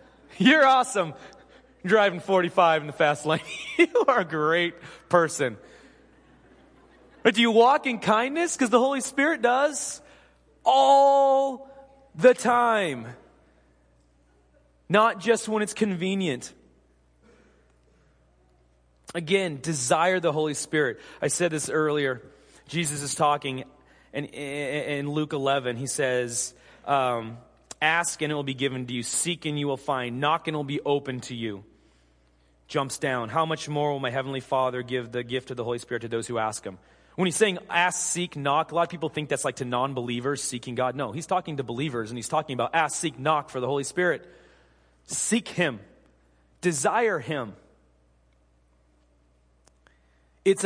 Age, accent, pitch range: 30-49, American, 115-175 Hz